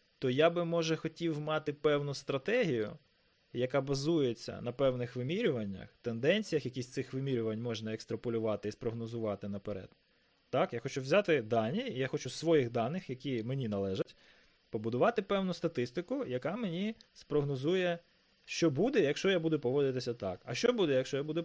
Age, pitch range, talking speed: 20-39, 125-165 Hz, 155 wpm